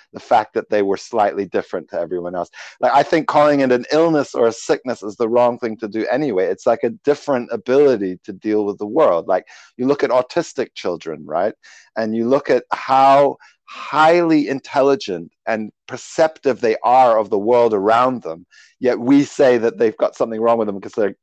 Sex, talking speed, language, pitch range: male, 205 wpm, English, 105-140 Hz